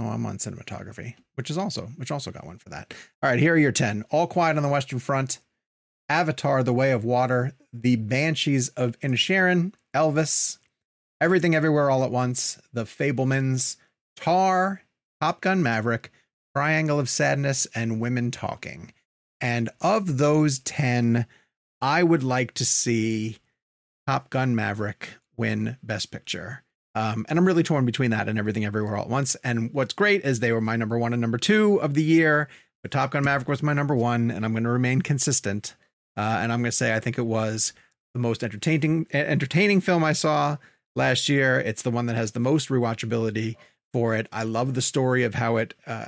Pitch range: 115-145 Hz